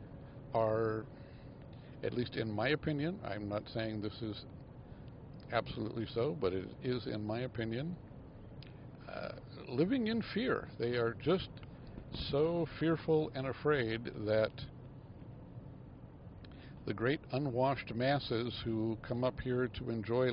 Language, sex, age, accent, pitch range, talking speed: English, male, 60-79, American, 110-135 Hz, 120 wpm